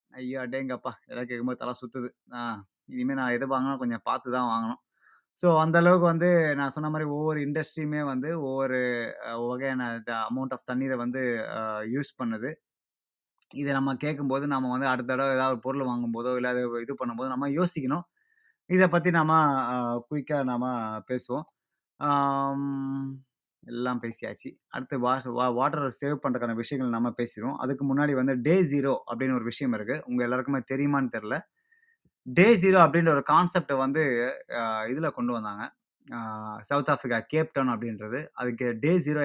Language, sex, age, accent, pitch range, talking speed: Tamil, male, 20-39, native, 125-145 Hz, 145 wpm